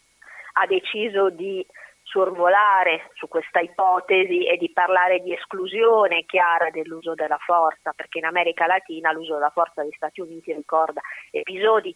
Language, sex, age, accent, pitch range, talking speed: Italian, female, 30-49, native, 165-205 Hz, 140 wpm